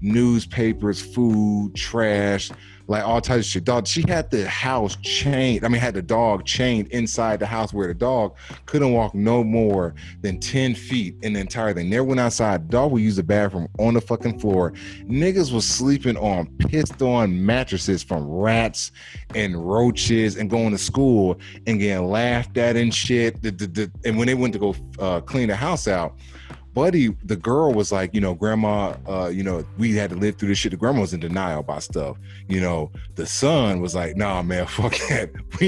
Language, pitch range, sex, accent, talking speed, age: English, 95-120 Hz, male, American, 195 wpm, 30-49